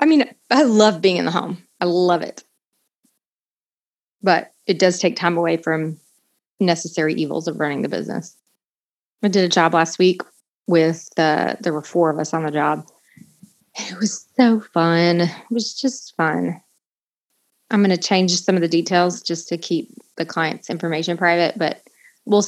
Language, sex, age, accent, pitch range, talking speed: English, female, 30-49, American, 170-210 Hz, 175 wpm